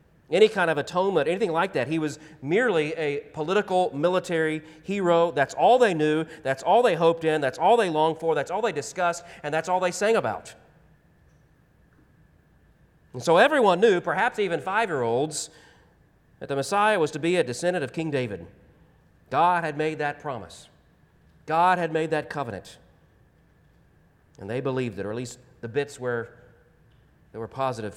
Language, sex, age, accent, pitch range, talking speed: English, male, 40-59, American, 130-180 Hz, 165 wpm